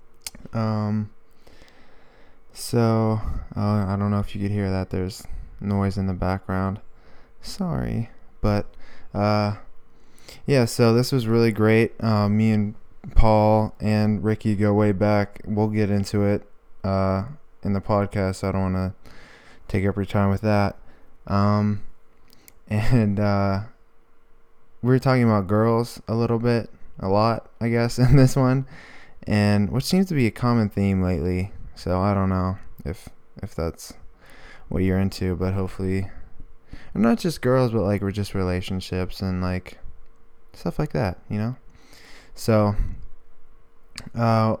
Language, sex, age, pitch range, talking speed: English, male, 20-39, 95-115 Hz, 150 wpm